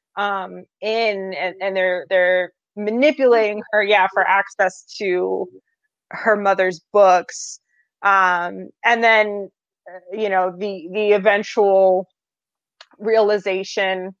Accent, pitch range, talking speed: American, 180-210 Hz, 100 wpm